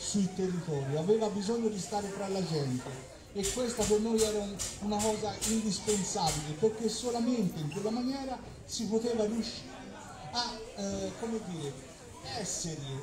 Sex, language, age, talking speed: male, Italian, 40-59, 140 wpm